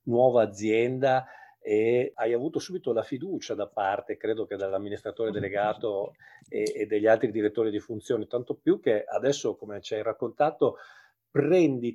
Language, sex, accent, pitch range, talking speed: Italian, male, native, 125-175 Hz, 150 wpm